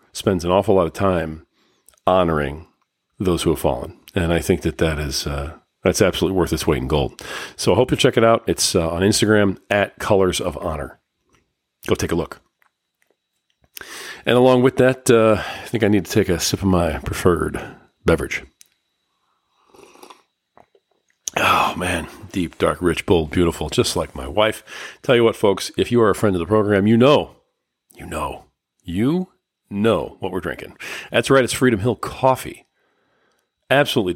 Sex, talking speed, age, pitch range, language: male, 175 wpm, 40-59, 85-110 Hz, English